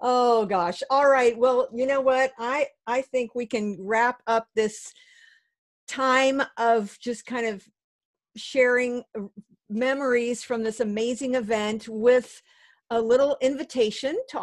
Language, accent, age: English, American, 50-69